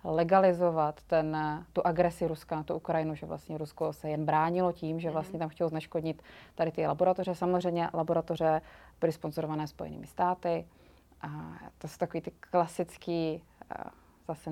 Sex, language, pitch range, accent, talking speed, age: female, Czech, 160-180 Hz, native, 150 wpm, 30-49